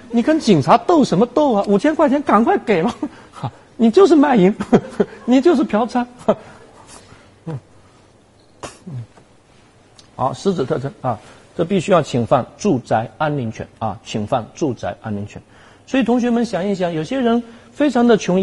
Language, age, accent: Chinese, 50-69, native